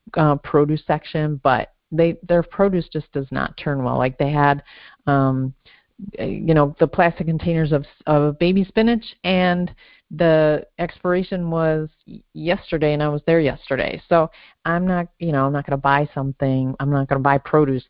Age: 40-59